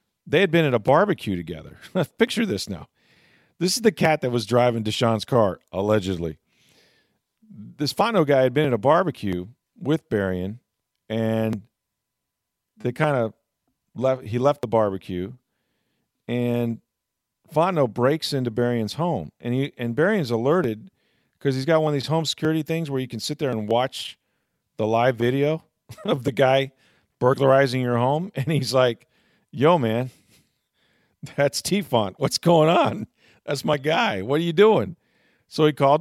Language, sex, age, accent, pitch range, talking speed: English, male, 40-59, American, 105-140 Hz, 160 wpm